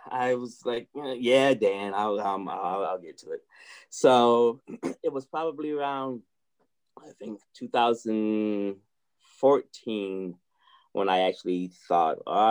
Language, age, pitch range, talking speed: English, 20-39, 95-130 Hz, 115 wpm